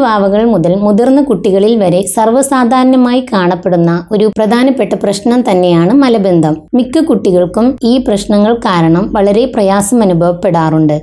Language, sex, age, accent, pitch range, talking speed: Malayalam, female, 20-39, native, 185-235 Hz, 110 wpm